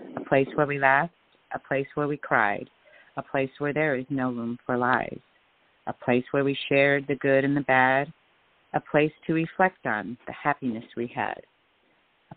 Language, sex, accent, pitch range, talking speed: English, female, American, 130-155 Hz, 190 wpm